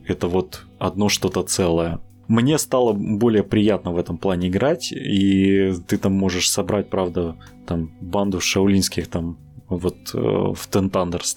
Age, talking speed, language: 20-39, 135 wpm, Russian